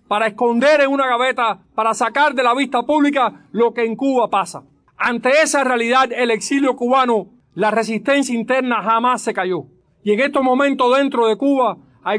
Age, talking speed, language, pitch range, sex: 40-59, 175 wpm, English, 220-260 Hz, male